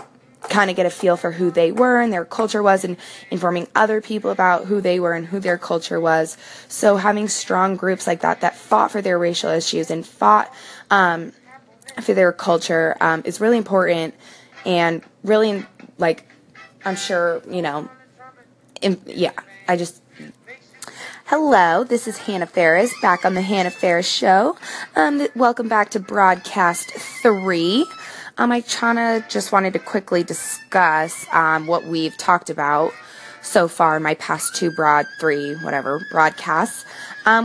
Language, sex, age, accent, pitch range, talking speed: English, female, 20-39, American, 170-225 Hz, 160 wpm